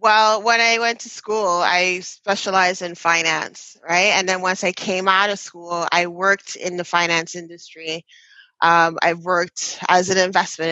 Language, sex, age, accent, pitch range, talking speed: English, female, 20-39, American, 175-210 Hz, 175 wpm